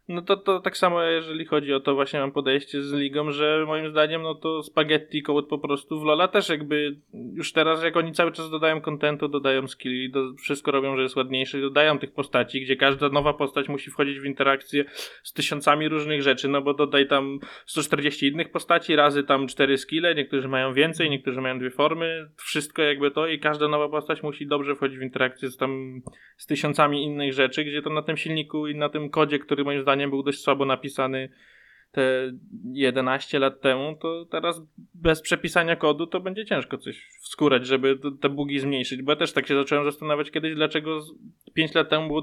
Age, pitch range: 20-39, 140-160 Hz